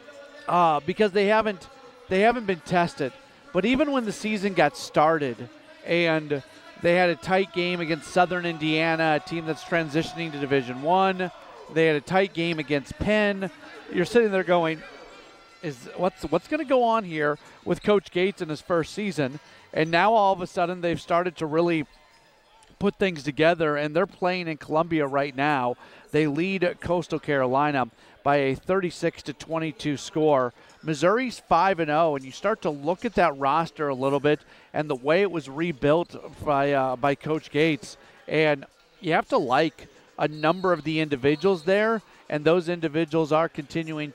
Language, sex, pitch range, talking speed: English, male, 145-180 Hz, 175 wpm